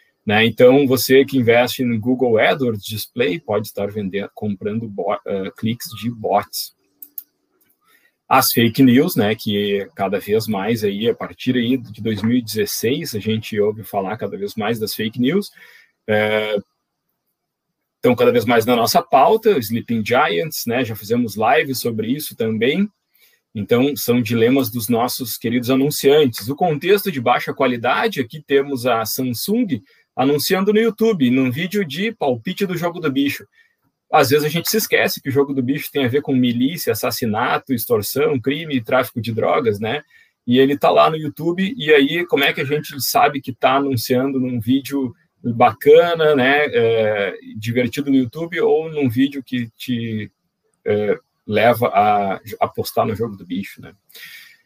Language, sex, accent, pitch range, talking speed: Portuguese, male, Brazilian, 115-170 Hz, 155 wpm